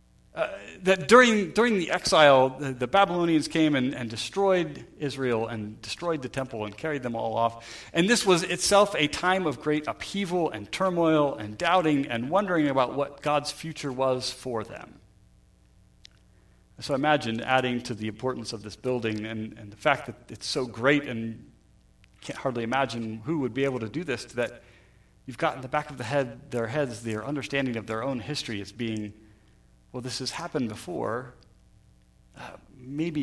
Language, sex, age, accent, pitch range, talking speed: English, male, 40-59, American, 115-155 Hz, 180 wpm